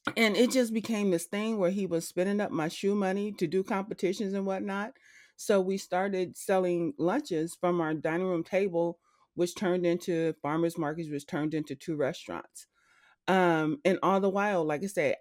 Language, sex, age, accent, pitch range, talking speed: English, female, 30-49, American, 165-225 Hz, 185 wpm